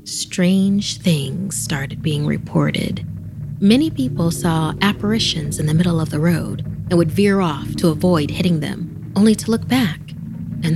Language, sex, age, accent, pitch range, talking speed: English, female, 30-49, American, 155-190 Hz, 155 wpm